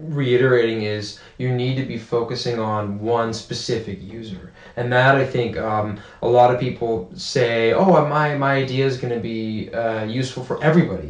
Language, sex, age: English, male, 20-39